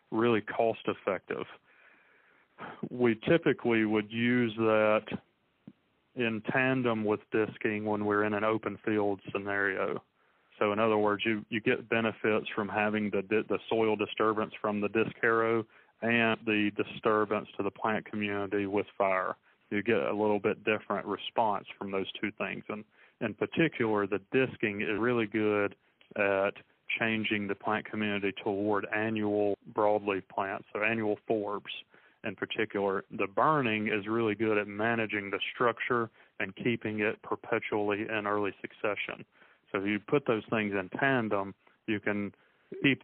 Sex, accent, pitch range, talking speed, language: male, American, 105-115 Hz, 145 wpm, English